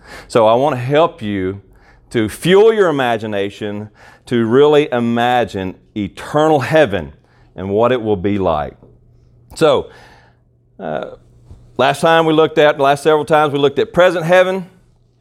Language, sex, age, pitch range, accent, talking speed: English, male, 40-59, 105-140 Hz, American, 145 wpm